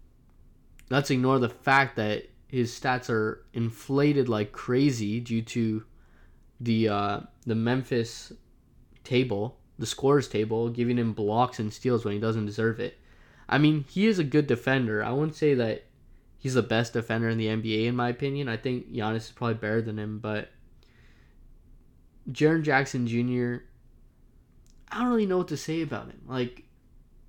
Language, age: English, 20-39